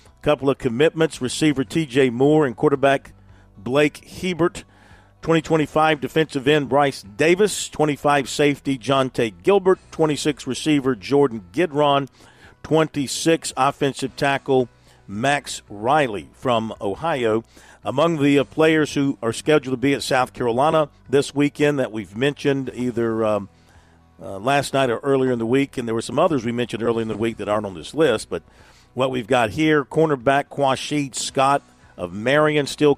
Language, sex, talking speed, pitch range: English, male, 155 wpm, 115-150 Hz